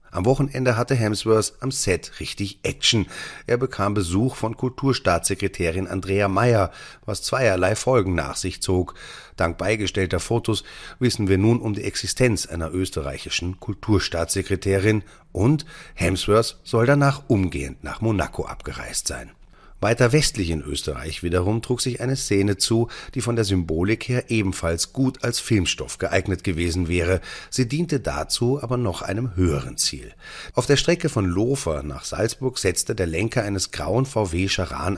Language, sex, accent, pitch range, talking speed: German, male, German, 95-120 Hz, 150 wpm